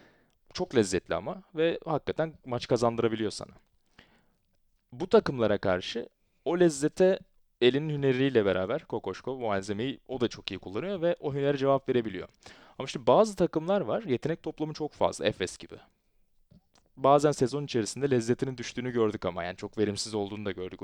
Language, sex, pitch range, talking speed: Turkish, male, 105-145 Hz, 155 wpm